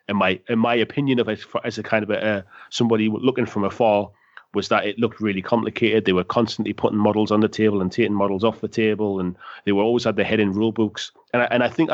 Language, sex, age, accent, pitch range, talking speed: English, male, 30-49, British, 105-125 Hz, 265 wpm